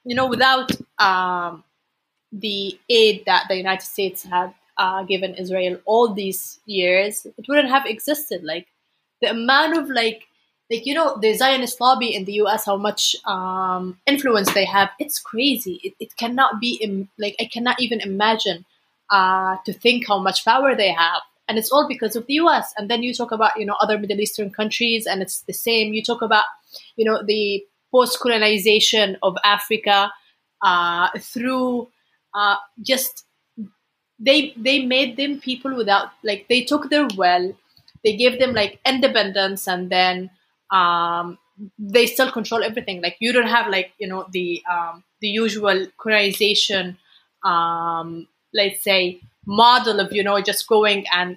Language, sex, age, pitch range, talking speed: English, female, 30-49, 195-240 Hz, 165 wpm